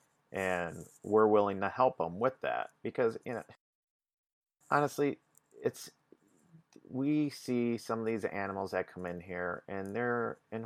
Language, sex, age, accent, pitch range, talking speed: English, male, 40-59, American, 95-115 Hz, 145 wpm